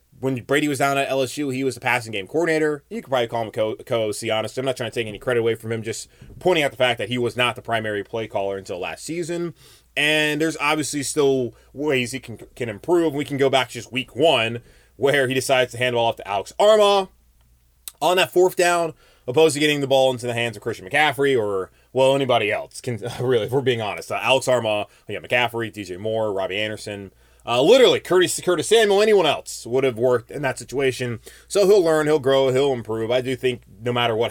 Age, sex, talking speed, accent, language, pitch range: 20-39, male, 235 wpm, American, English, 110-140 Hz